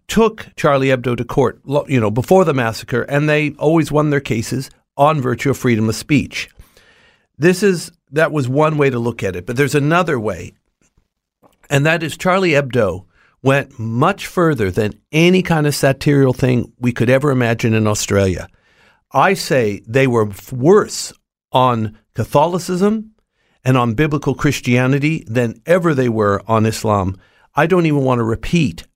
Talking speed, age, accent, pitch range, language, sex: 165 wpm, 50-69, American, 115-150 Hz, English, male